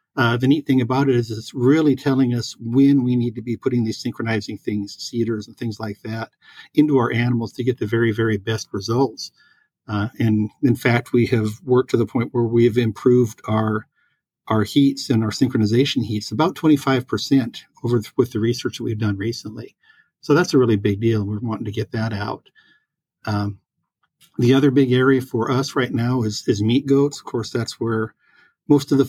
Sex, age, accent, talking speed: male, 50-69, American, 210 wpm